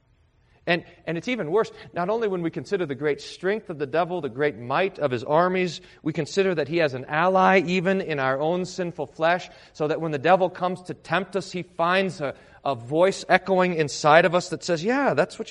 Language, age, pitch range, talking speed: English, 40-59, 115-180 Hz, 225 wpm